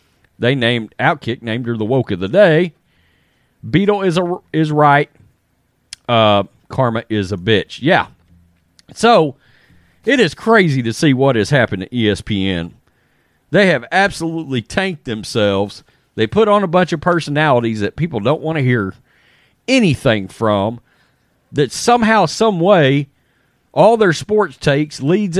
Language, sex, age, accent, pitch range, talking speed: English, male, 40-59, American, 125-185 Hz, 145 wpm